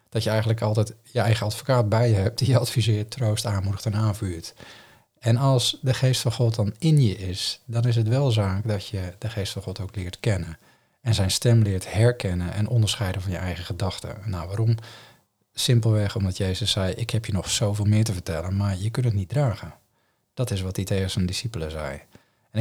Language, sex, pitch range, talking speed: Dutch, male, 100-115 Hz, 215 wpm